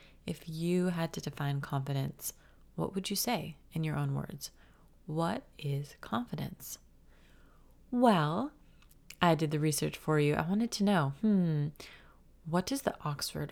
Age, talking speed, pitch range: 30-49, 145 wpm, 150-185 Hz